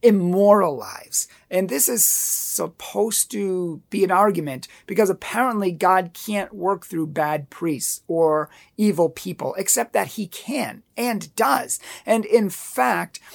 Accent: American